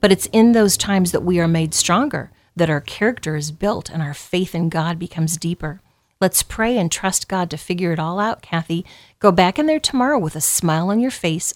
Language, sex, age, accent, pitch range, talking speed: English, female, 40-59, American, 160-205 Hz, 230 wpm